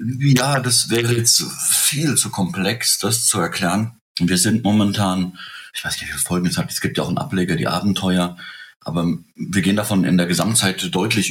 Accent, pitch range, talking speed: German, 90-110 Hz, 190 wpm